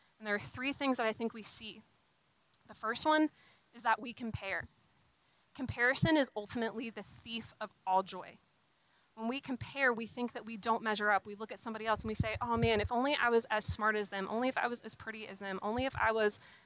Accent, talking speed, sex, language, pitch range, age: American, 235 wpm, female, English, 205-235 Hz, 20-39